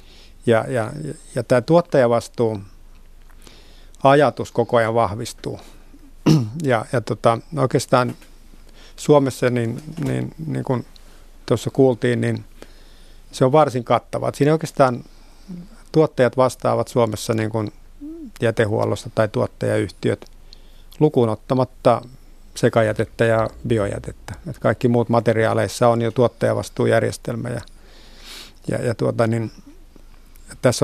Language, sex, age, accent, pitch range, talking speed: Finnish, male, 50-69, native, 115-130 Hz, 105 wpm